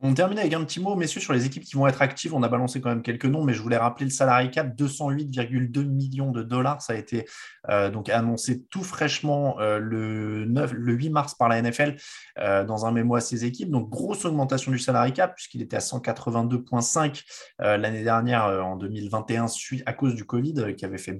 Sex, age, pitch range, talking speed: male, 20-39, 110-140 Hz, 220 wpm